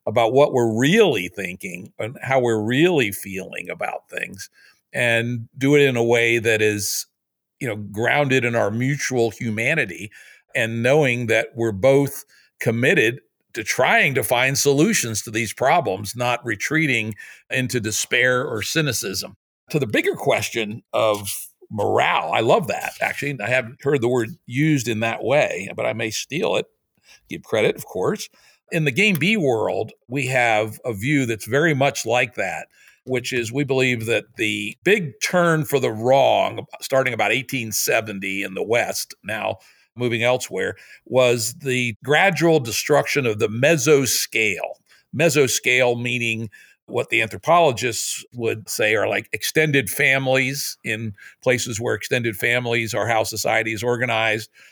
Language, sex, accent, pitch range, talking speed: English, male, American, 110-135 Hz, 150 wpm